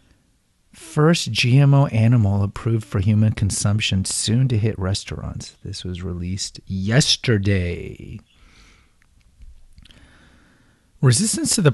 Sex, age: male, 40-59